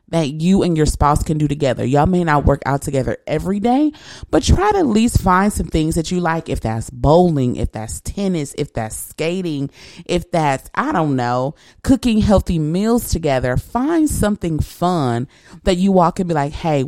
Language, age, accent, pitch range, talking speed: English, 30-49, American, 140-200 Hz, 195 wpm